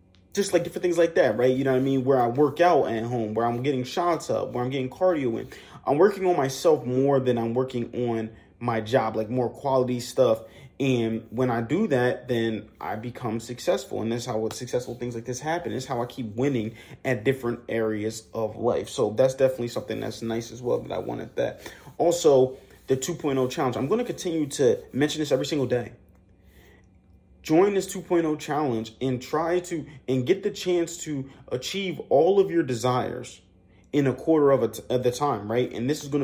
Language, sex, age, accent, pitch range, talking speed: English, male, 30-49, American, 120-150 Hz, 205 wpm